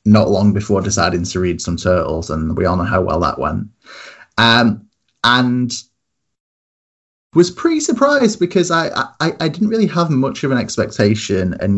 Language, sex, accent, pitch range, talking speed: English, male, British, 95-120 Hz, 170 wpm